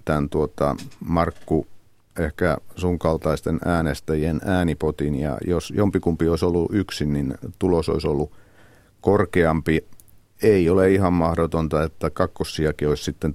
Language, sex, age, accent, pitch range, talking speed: Finnish, male, 50-69, native, 80-95 Hz, 115 wpm